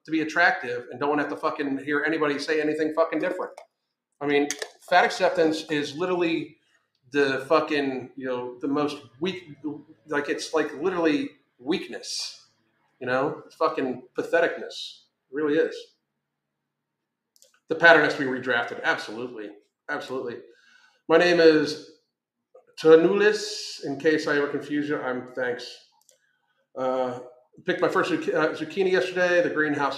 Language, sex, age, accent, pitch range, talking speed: English, male, 40-59, American, 140-170 Hz, 140 wpm